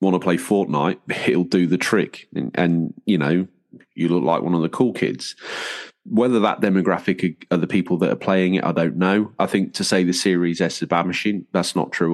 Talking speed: 230 wpm